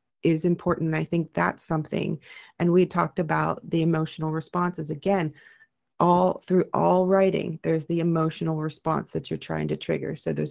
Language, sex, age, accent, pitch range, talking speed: English, female, 30-49, American, 160-185 Hz, 165 wpm